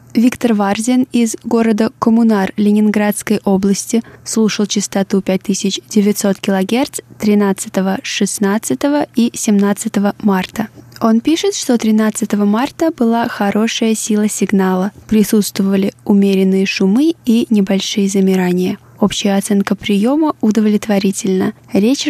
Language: Russian